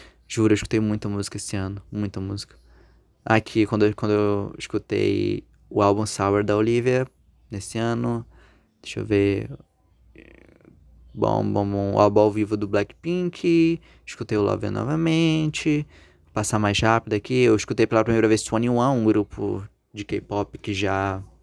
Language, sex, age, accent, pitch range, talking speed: Portuguese, male, 20-39, Brazilian, 100-115 Hz, 150 wpm